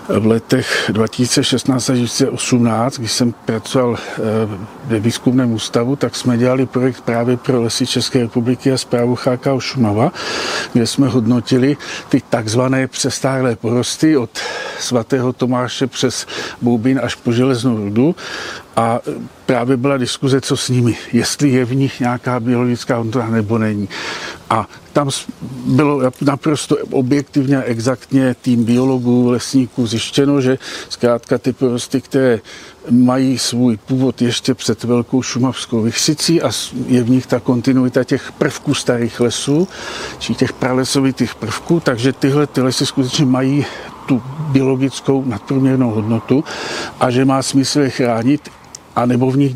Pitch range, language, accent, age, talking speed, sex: 120-135 Hz, Czech, native, 50-69, 140 wpm, male